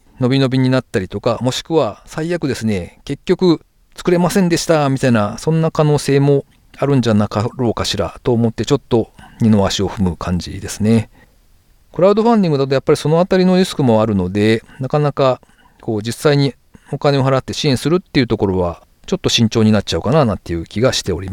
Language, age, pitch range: Japanese, 40-59, 100-145 Hz